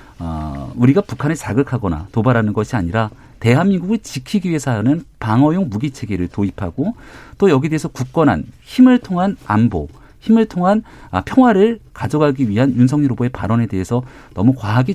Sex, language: male, Korean